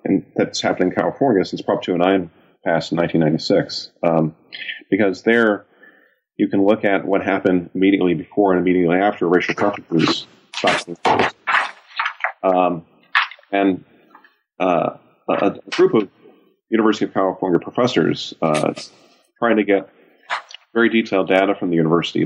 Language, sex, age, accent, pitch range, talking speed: English, male, 40-59, American, 85-100 Hz, 130 wpm